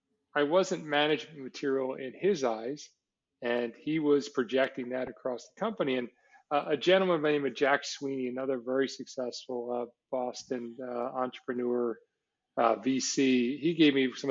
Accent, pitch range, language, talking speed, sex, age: American, 130-155 Hz, English, 160 wpm, male, 40-59